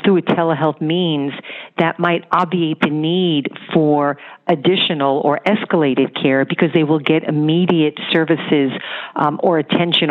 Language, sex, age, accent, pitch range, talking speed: English, female, 50-69, American, 150-180 Hz, 135 wpm